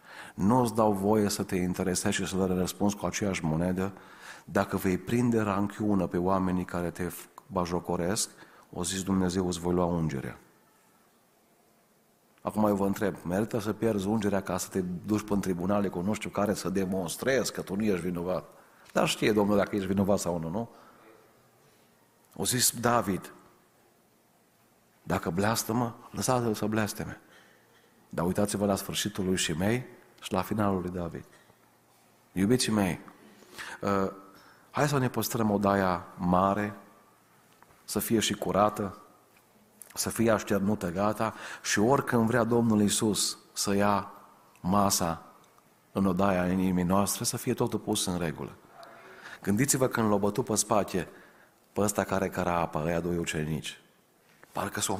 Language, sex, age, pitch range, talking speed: Romanian, male, 40-59, 90-105 Hz, 145 wpm